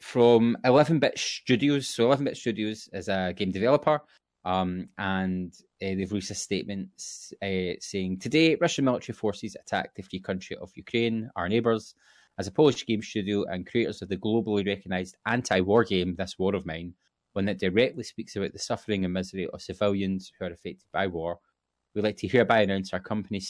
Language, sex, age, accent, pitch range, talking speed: English, male, 20-39, British, 95-120 Hz, 185 wpm